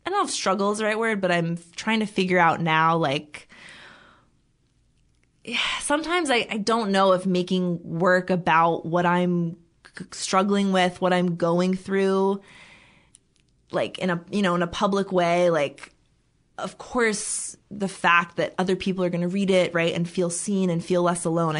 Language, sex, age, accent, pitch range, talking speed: English, female, 20-39, American, 170-200 Hz, 180 wpm